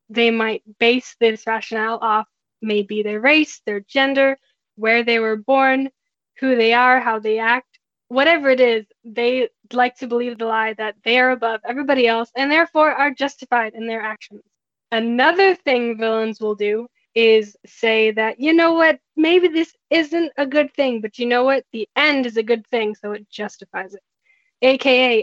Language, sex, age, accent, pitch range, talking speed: English, female, 10-29, American, 220-280 Hz, 180 wpm